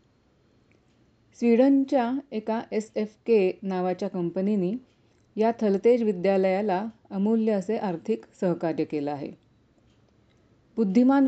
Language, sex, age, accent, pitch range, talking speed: Hindi, female, 40-59, native, 180-220 Hz, 85 wpm